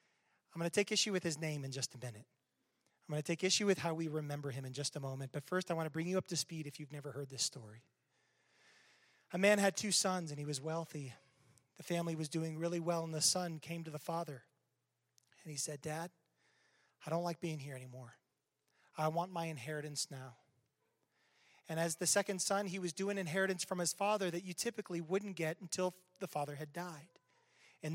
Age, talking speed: 30-49, 220 wpm